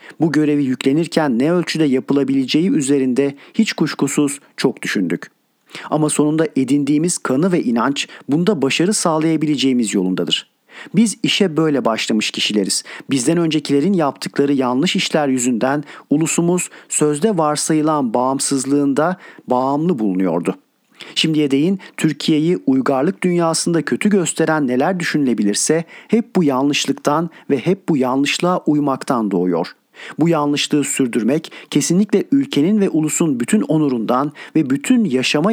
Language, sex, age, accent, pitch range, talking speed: Turkish, male, 50-69, native, 135-170 Hz, 115 wpm